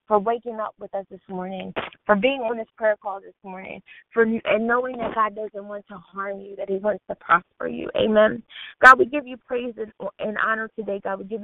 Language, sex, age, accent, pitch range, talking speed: English, female, 20-39, American, 210-255 Hz, 230 wpm